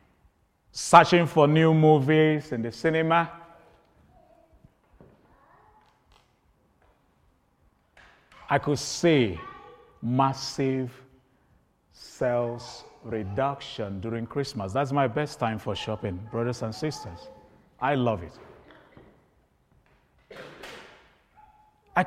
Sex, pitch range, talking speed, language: male, 135-200 Hz, 75 wpm, English